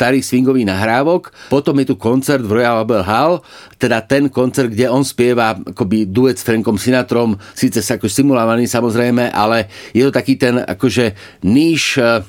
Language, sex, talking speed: Slovak, male, 165 wpm